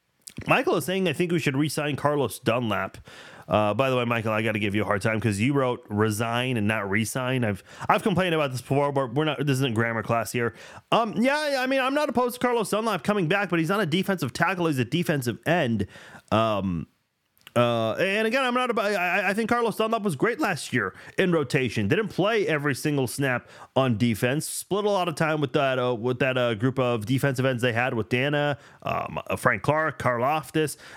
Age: 30-49